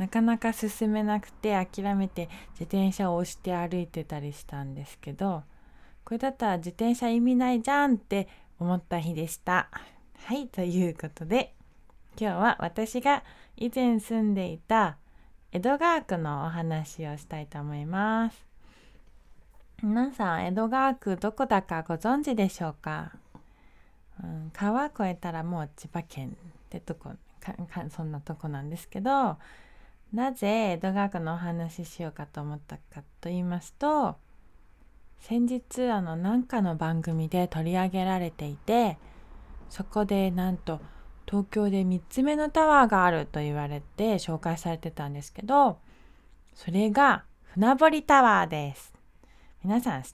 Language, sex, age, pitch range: Japanese, female, 20-39, 160-225 Hz